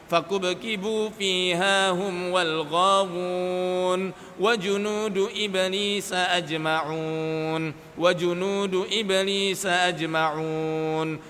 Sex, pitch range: male, 180-205 Hz